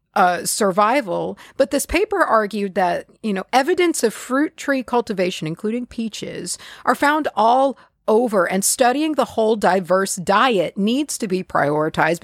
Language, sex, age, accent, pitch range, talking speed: English, female, 40-59, American, 175-250 Hz, 145 wpm